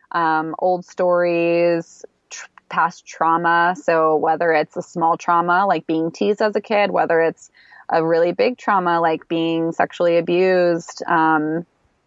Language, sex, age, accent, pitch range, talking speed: English, female, 20-39, American, 165-185 Hz, 140 wpm